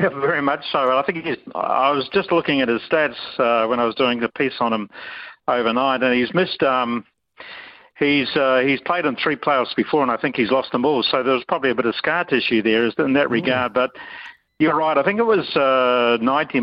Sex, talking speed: male, 235 wpm